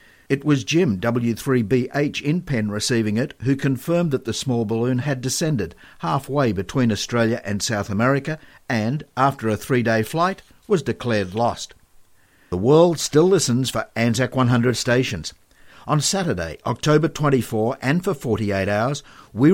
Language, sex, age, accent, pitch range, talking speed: English, male, 60-79, Australian, 110-145 Hz, 145 wpm